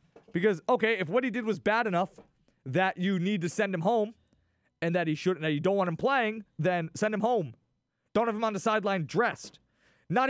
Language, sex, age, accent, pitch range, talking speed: English, male, 30-49, American, 165-230 Hz, 220 wpm